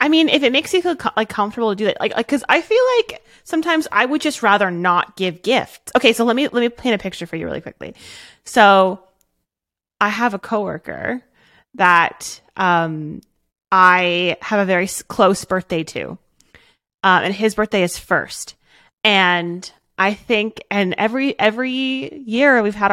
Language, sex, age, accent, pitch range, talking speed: English, female, 30-49, American, 190-285 Hz, 180 wpm